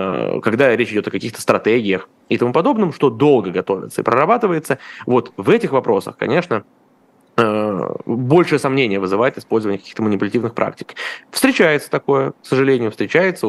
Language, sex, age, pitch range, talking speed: Russian, male, 20-39, 105-145 Hz, 140 wpm